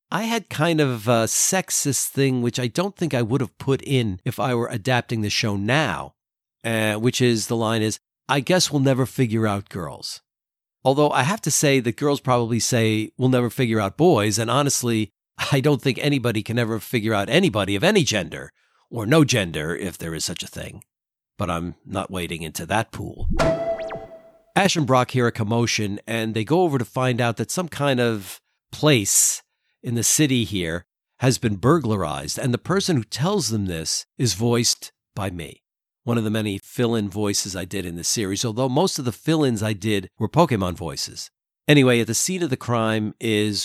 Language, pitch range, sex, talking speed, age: English, 110-145 Hz, male, 200 wpm, 50-69